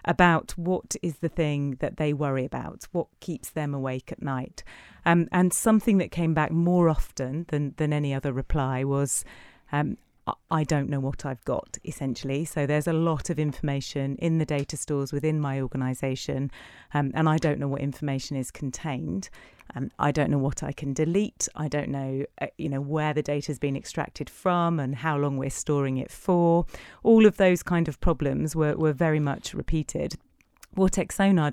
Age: 40-59